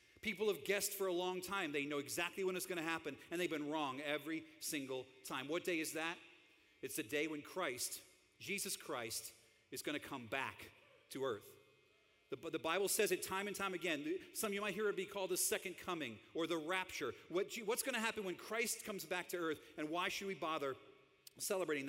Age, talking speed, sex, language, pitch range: 40-59, 215 wpm, male, English, 155-210 Hz